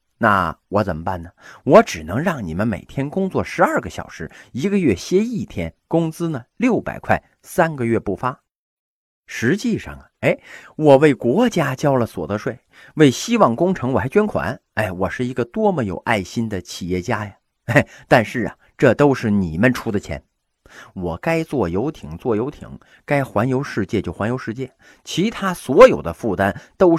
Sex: male